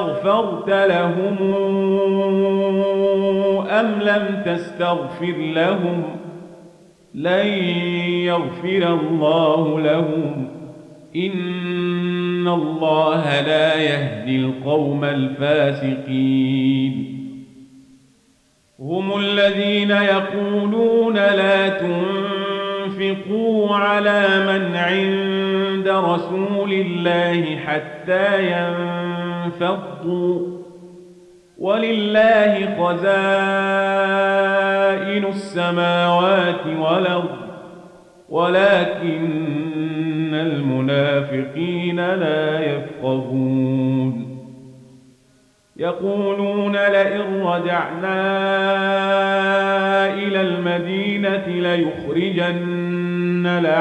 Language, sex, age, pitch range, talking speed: Arabic, male, 40-59, 160-195 Hz, 45 wpm